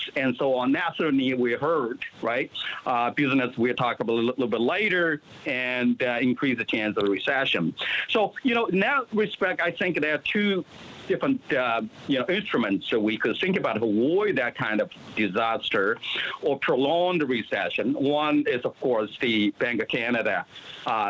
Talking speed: 180 wpm